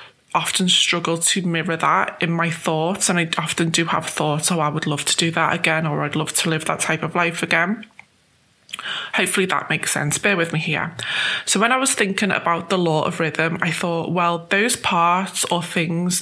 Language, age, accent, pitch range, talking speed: English, 20-39, British, 165-190 Hz, 210 wpm